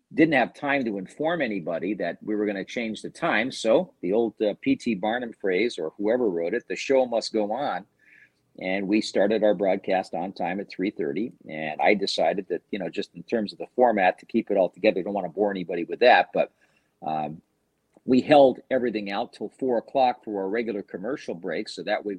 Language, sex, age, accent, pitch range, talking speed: English, male, 50-69, American, 95-130 Hz, 215 wpm